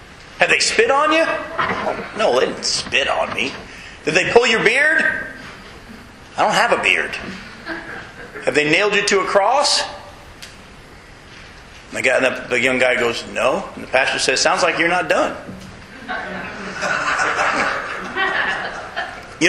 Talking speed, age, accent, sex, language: 150 wpm, 40-59, American, male, English